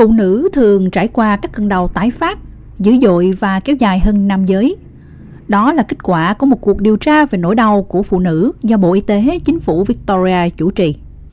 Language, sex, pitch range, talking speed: Vietnamese, female, 190-265 Hz, 220 wpm